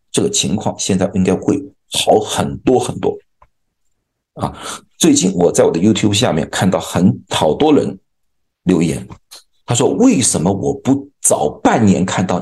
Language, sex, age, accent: Chinese, male, 50-69, native